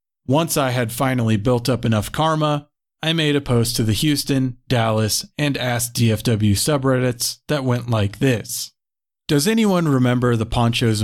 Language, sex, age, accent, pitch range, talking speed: English, male, 40-59, American, 115-145 Hz, 150 wpm